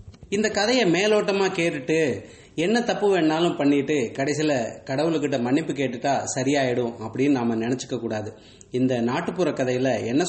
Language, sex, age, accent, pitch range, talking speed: English, male, 30-49, Indian, 125-155 Hz, 120 wpm